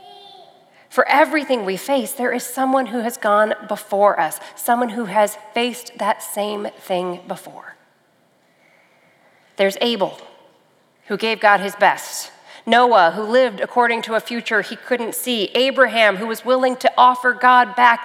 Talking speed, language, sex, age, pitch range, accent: 150 wpm, English, female, 40-59, 220-265 Hz, American